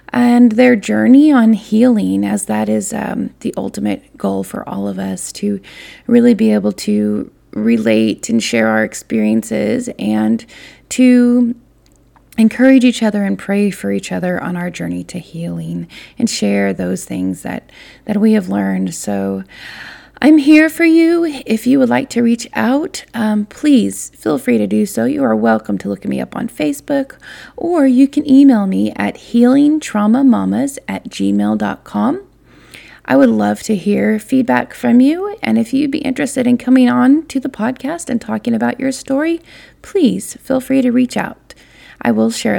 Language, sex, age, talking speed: English, female, 30-49, 170 wpm